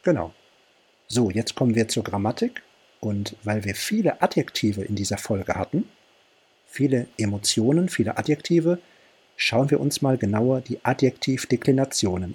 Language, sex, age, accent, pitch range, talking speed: German, male, 50-69, German, 110-150 Hz, 130 wpm